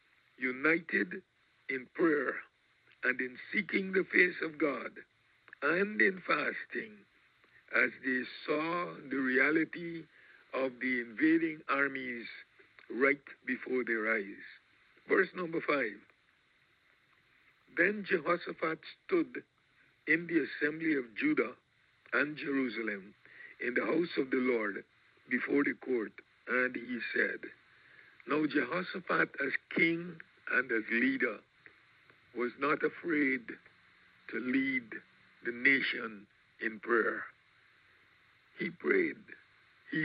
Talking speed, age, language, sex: 105 wpm, 60-79, English, male